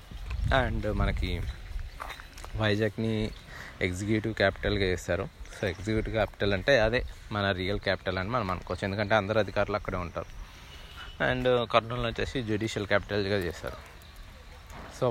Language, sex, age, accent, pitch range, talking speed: Telugu, male, 20-39, native, 95-115 Hz, 115 wpm